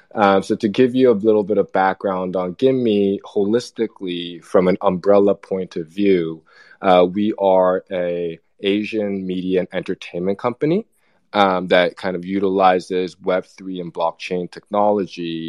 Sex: male